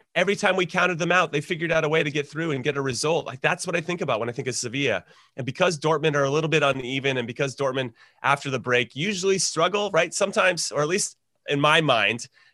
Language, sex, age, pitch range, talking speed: English, male, 30-49, 120-155 Hz, 255 wpm